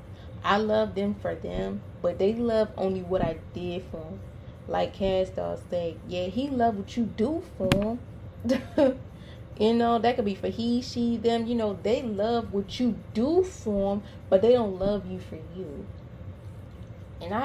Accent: American